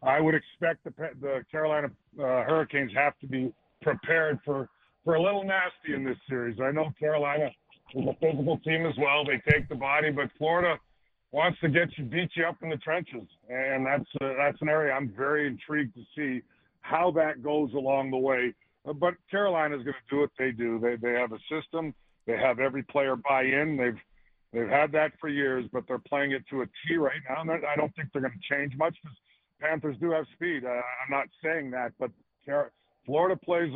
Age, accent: 50-69, American